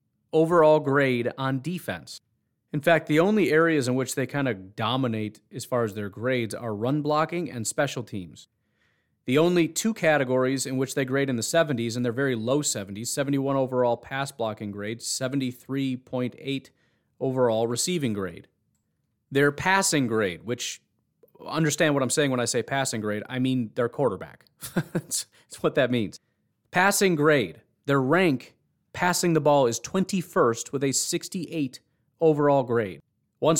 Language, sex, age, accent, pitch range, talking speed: English, male, 30-49, American, 120-150 Hz, 155 wpm